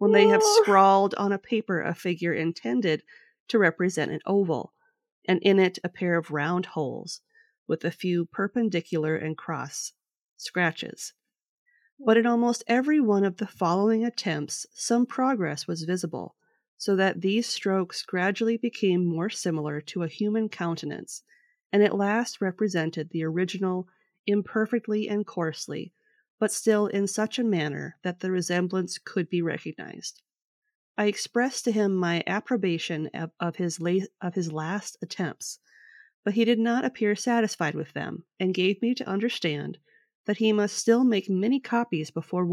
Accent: American